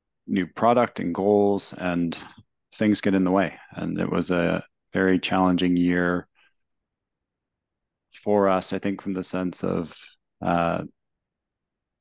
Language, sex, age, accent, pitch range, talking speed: English, male, 30-49, American, 85-95 Hz, 130 wpm